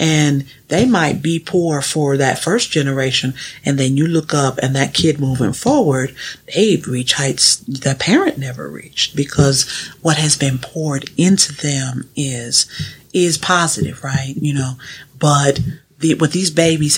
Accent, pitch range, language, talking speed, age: American, 135-155 Hz, English, 150 wpm, 40-59